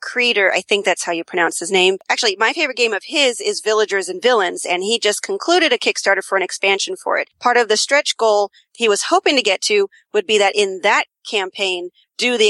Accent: American